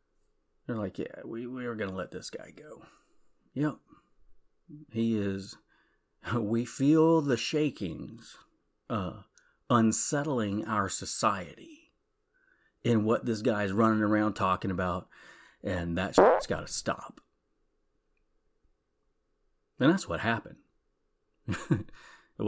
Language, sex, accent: English, male, American